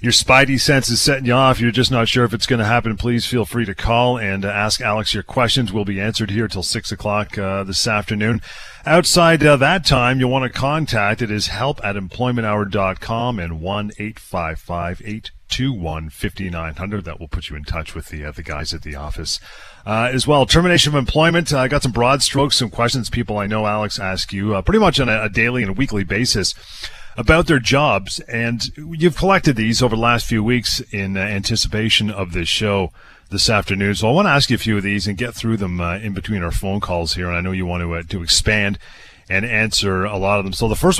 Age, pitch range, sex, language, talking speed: 40-59, 95-125 Hz, male, English, 245 wpm